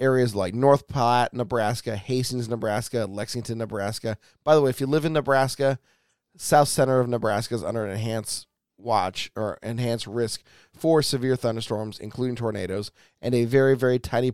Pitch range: 105-130 Hz